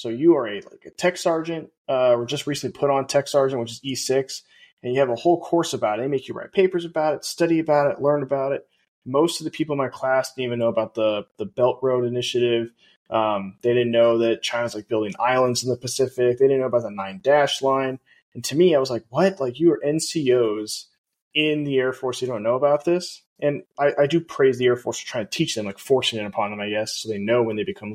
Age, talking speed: 20-39, 260 wpm